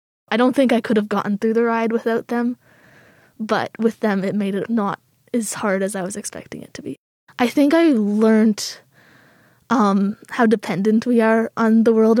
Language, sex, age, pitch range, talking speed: English, female, 20-39, 200-230 Hz, 195 wpm